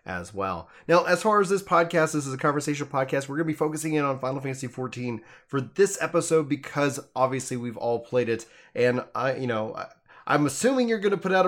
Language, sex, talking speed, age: English, male, 215 wpm, 20-39